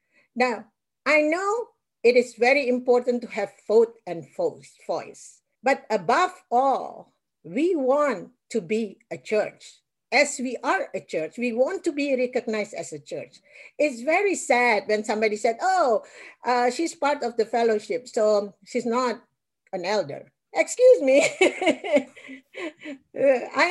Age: 50-69